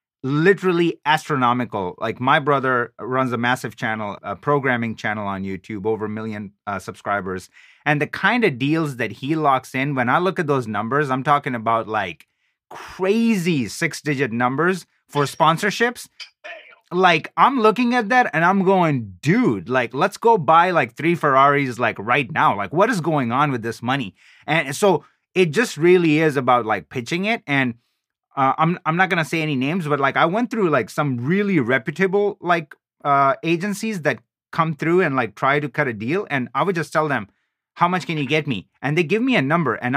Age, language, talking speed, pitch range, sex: 30-49, English, 195 wpm, 130-180 Hz, male